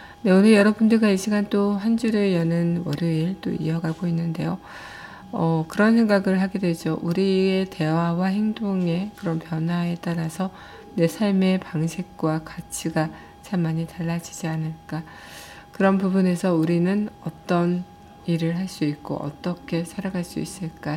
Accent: native